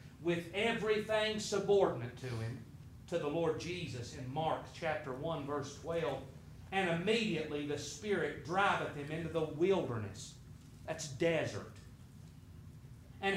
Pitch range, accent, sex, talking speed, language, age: 130-195 Hz, American, male, 120 wpm, English, 40-59